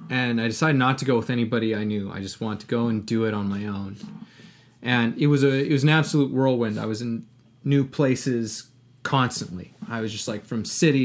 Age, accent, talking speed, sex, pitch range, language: 20-39, American, 230 wpm, male, 115-130 Hz, English